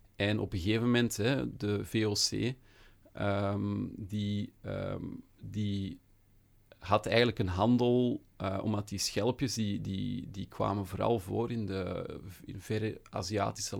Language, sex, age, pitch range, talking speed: Dutch, male, 40-59, 100-115 Hz, 135 wpm